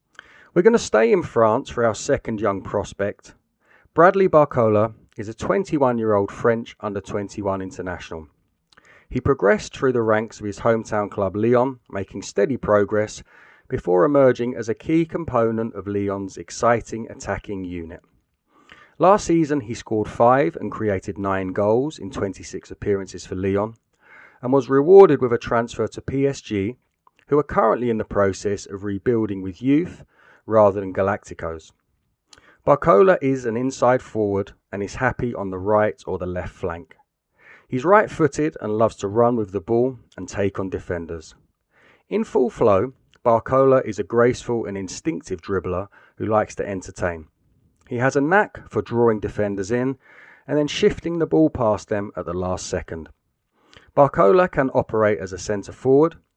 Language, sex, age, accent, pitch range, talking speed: English, male, 30-49, British, 100-130 Hz, 155 wpm